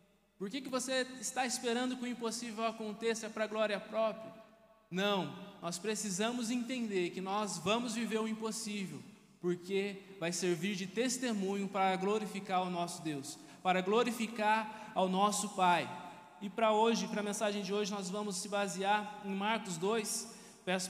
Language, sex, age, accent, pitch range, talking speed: Portuguese, male, 20-39, Brazilian, 185-215 Hz, 160 wpm